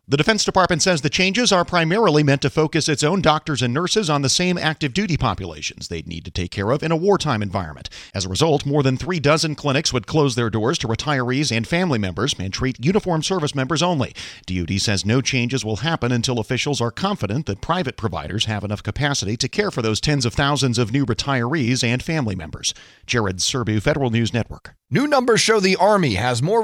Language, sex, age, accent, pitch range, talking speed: English, male, 40-59, American, 125-180 Hz, 215 wpm